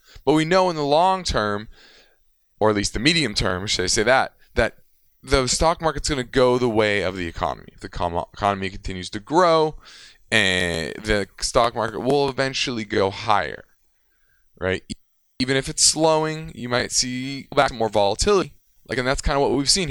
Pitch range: 100-145 Hz